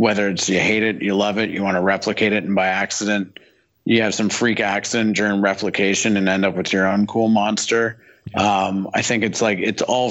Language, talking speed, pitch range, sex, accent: English, 225 wpm, 100-115 Hz, male, American